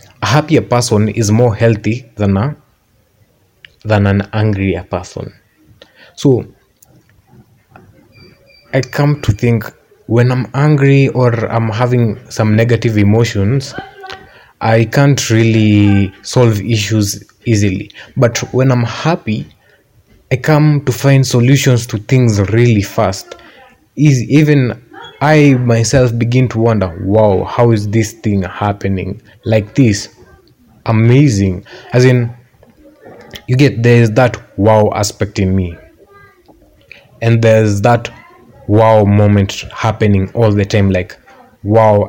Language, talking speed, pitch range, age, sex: Swahili, 115 wpm, 105-125 Hz, 20-39, male